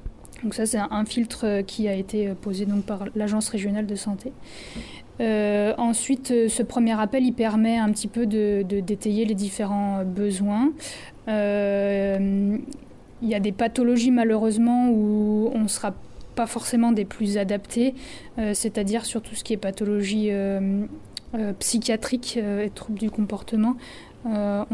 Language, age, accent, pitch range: French, 20-39, French, 205-230 Hz